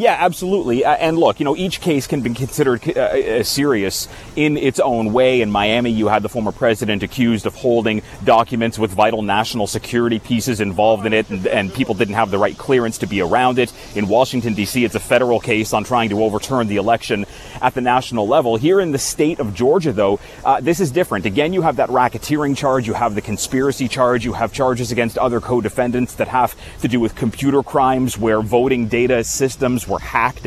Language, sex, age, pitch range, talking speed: English, male, 30-49, 110-135 Hz, 210 wpm